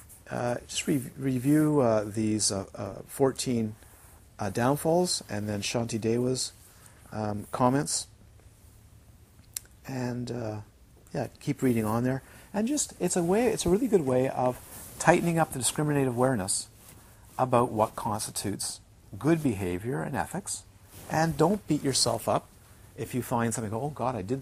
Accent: American